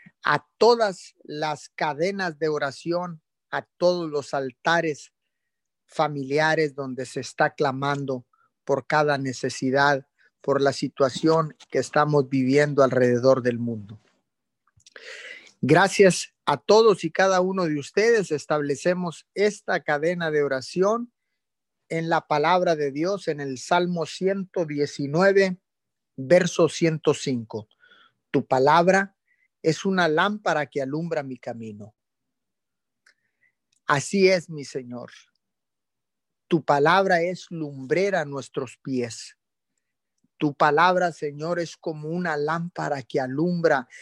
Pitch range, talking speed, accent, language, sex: 145-185 Hz, 110 wpm, Mexican, Spanish, male